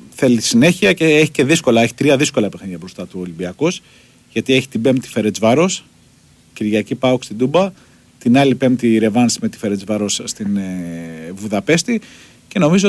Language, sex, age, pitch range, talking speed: Greek, male, 40-59, 110-150 Hz, 160 wpm